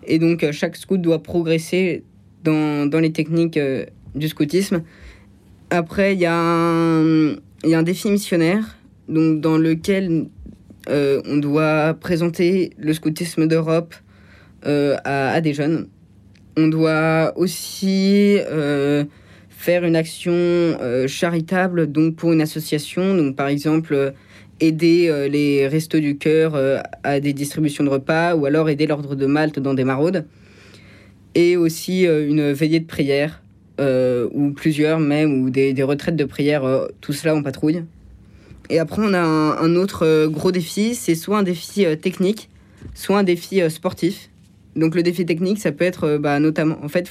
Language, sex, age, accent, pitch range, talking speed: French, female, 20-39, French, 140-170 Hz, 155 wpm